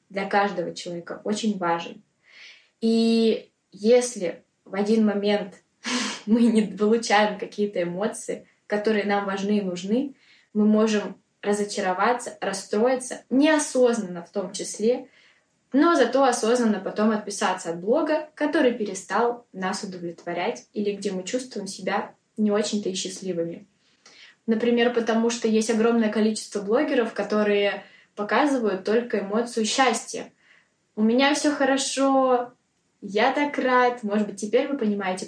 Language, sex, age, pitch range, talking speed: Russian, female, 20-39, 195-240 Hz, 120 wpm